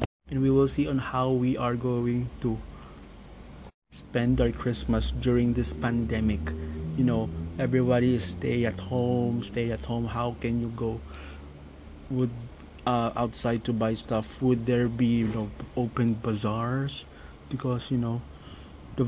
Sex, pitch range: male, 105-125 Hz